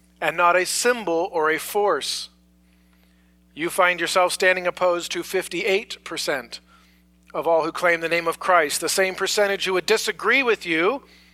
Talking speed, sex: 160 wpm, male